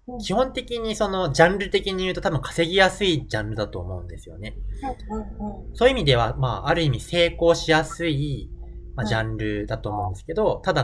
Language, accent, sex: Japanese, native, male